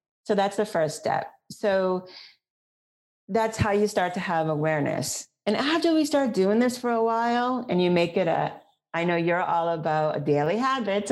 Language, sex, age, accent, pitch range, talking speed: English, female, 40-59, American, 155-205 Hz, 185 wpm